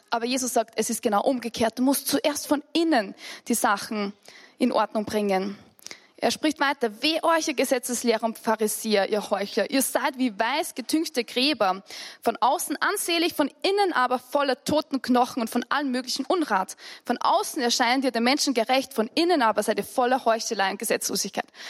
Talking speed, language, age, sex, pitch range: 175 wpm, English, 20-39, female, 225-300 Hz